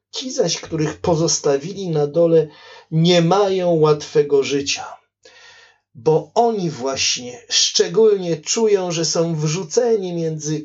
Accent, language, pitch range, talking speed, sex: native, Polish, 150-210 Hz, 105 wpm, male